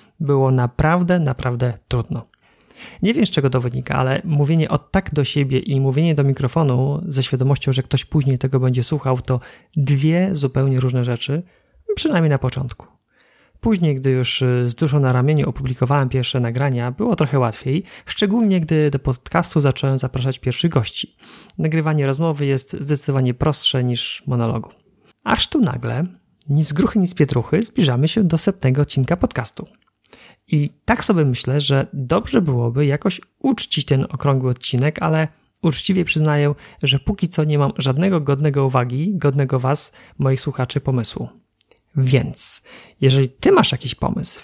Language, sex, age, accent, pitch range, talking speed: Polish, male, 30-49, native, 130-155 Hz, 150 wpm